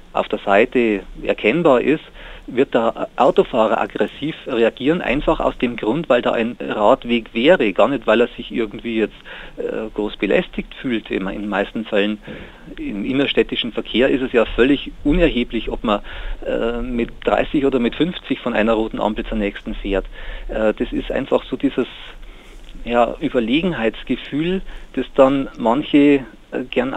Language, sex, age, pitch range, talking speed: German, male, 40-59, 110-140 Hz, 155 wpm